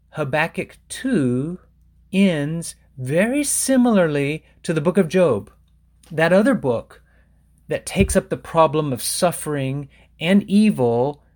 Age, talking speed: 30-49, 115 wpm